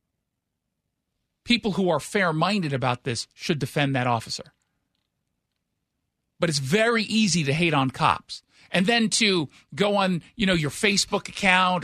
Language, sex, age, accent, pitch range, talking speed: English, male, 40-59, American, 135-190 Hz, 145 wpm